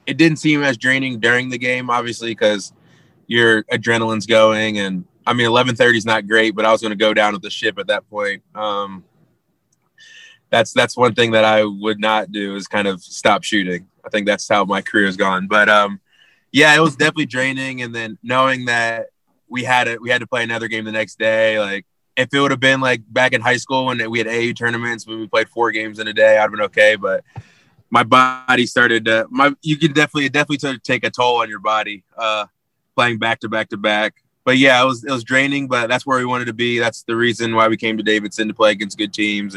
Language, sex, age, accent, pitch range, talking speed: English, male, 20-39, American, 105-125 Hz, 240 wpm